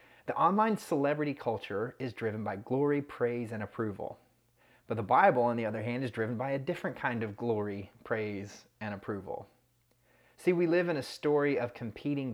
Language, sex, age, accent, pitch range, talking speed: English, male, 30-49, American, 115-145 Hz, 180 wpm